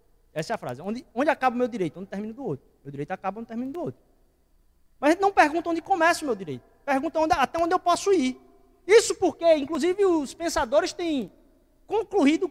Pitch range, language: 235-350 Hz, Portuguese